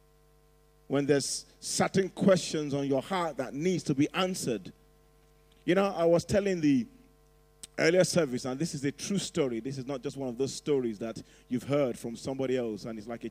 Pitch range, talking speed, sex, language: 130-150 Hz, 200 wpm, male, English